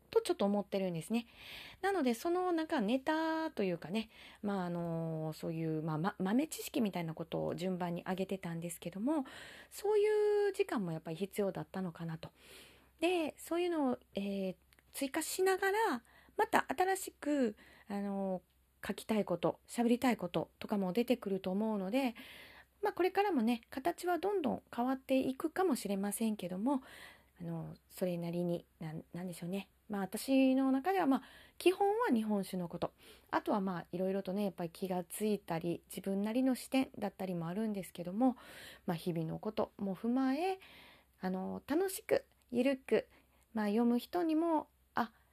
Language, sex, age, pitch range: Japanese, female, 30-49, 185-285 Hz